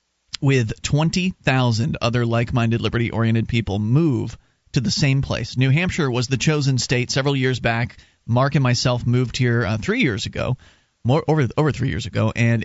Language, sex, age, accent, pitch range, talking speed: English, male, 30-49, American, 115-140 Hz, 165 wpm